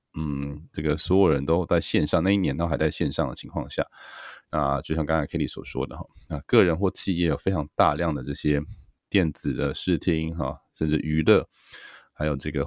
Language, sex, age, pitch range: Chinese, male, 20-39, 75-95 Hz